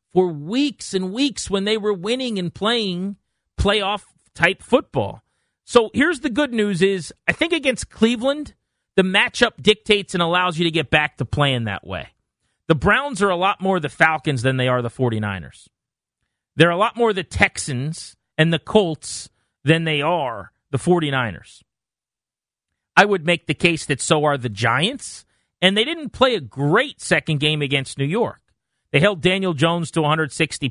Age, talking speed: 40-59, 175 wpm